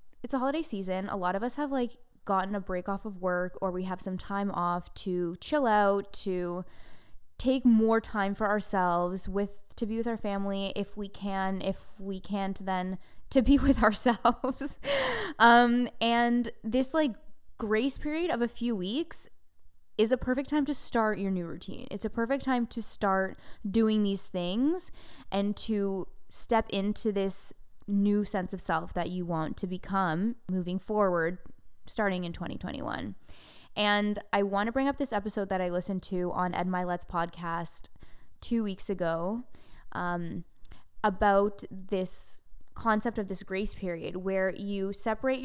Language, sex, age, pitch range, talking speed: English, female, 20-39, 190-235 Hz, 165 wpm